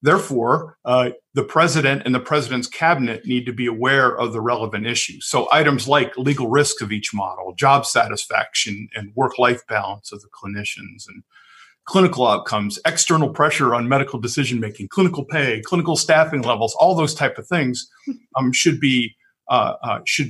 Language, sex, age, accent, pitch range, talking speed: English, male, 50-69, American, 110-145 Hz, 155 wpm